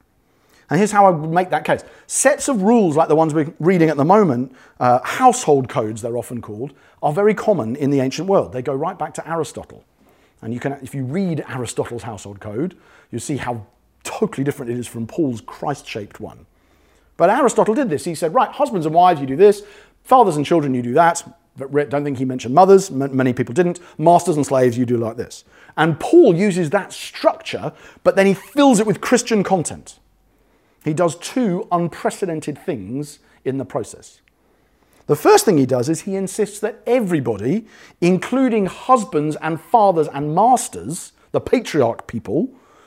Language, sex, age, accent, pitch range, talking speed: English, male, 40-59, British, 130-195 Hz, 190 wpm